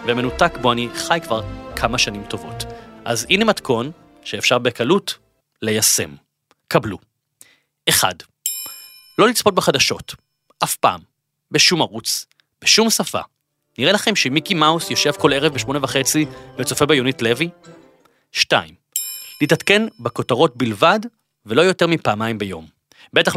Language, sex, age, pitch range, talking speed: Hebrew, male, 30-49, 115-155 Hz, 115 wpm